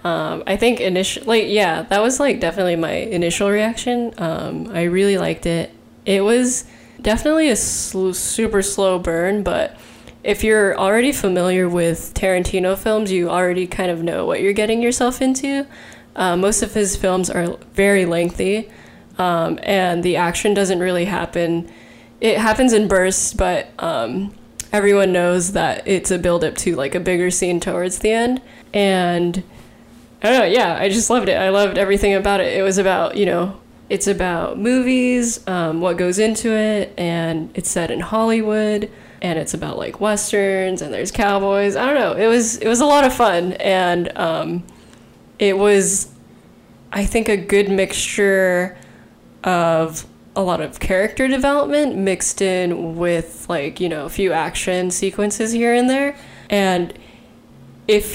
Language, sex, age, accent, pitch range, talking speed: English, female, 10-29, American, 175-215 Hz, 165 wpm